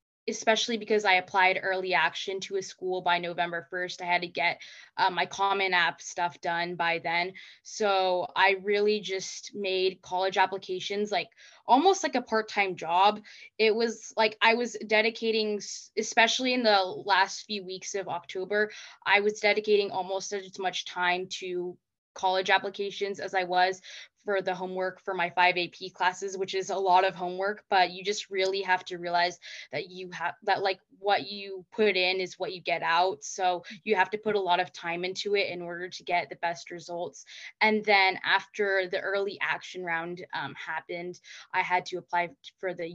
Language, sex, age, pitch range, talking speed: English, female, 10-29, 180-200 Hz, 185 wpm